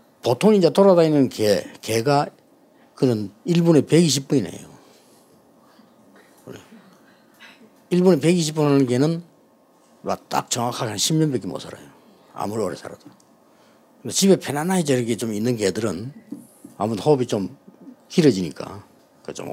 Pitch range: 125-190 Hz